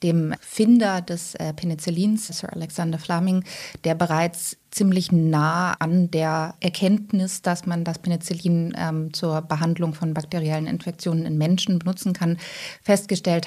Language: English